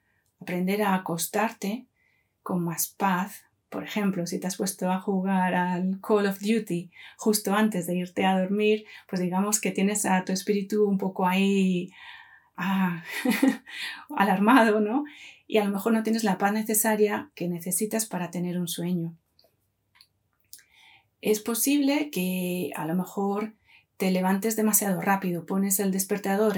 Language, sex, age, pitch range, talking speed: Spanish, female, 30-49, 185-225 Hz, 145 wpm